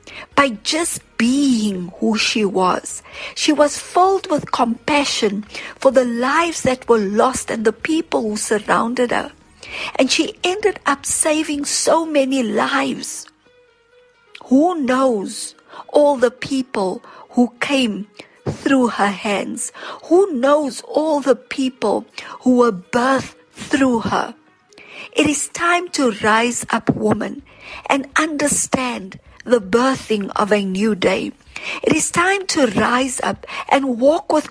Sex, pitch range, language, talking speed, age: female, 225-295 Hz, English, 130 wpm, 50-69